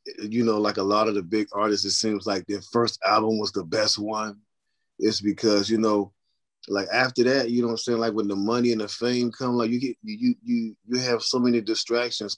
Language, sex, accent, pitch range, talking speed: English, male, American, 110-125 Hz, 235 wpm